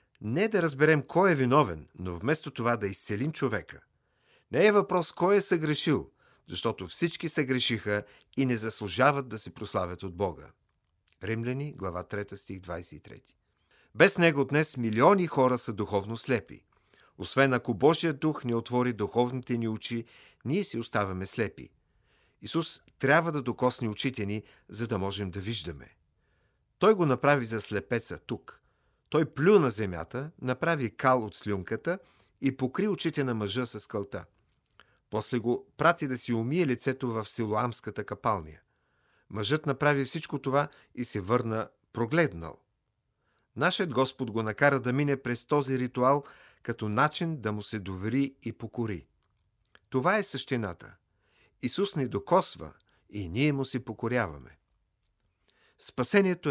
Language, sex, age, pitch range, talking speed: Bulgarian, male, 50-69, 105-140 Hz, 145 wpm